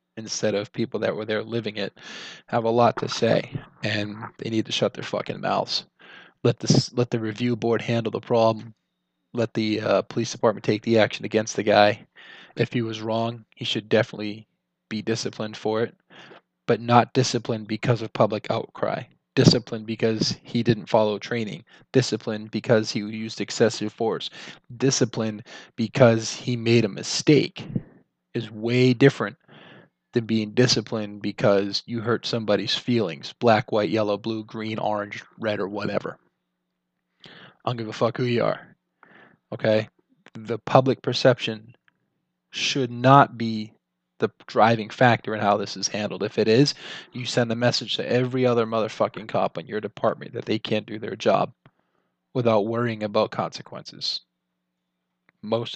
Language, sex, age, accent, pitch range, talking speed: English, male, 20-39, American, 105-120 Hz, 155 wpm